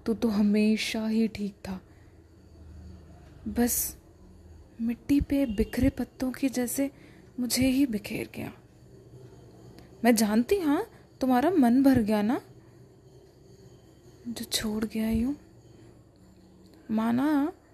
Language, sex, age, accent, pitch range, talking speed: Hindi, female, 20-39, native, 200-260 Hz, 100 wpm